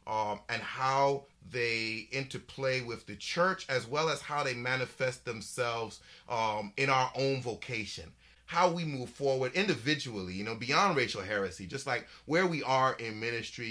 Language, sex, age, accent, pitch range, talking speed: English, male, 30-49, American, 105-145 Hz, 160 wpm